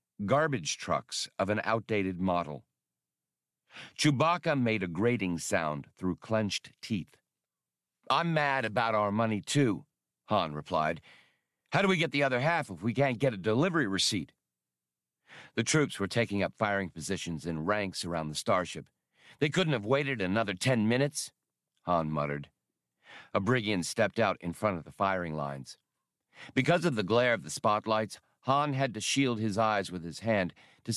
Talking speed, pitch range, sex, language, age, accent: 165 wpm, 95-135 Hz, male, English, 50-69, American